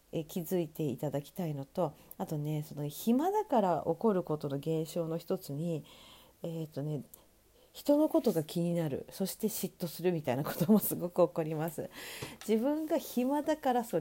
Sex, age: female, 40-59